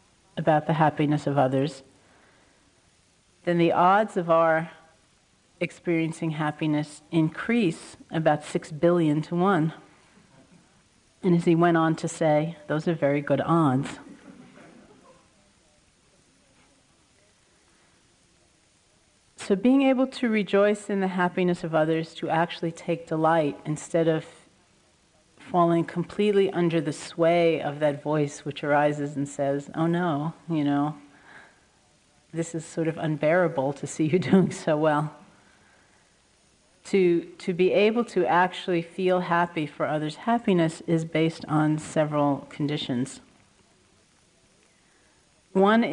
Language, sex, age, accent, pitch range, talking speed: English, female, 40-59, American, 150-175 Hz, 120 wpm